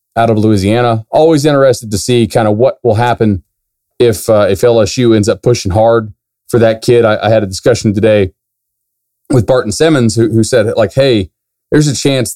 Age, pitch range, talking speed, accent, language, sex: 30-49, 105-120 Hz, 195 wpm, American, English, male